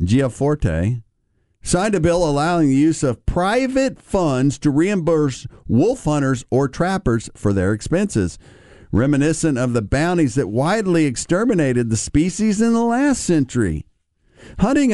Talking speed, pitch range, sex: 135 wpm, 110-150 Hz, male